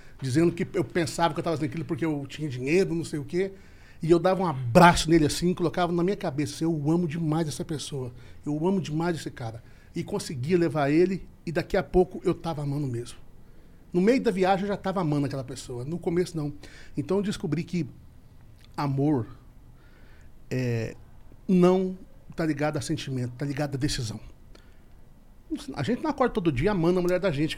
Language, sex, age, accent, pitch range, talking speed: Portuguese, male, 60-79, Brazilian, 140-180 Hz, 190 wpm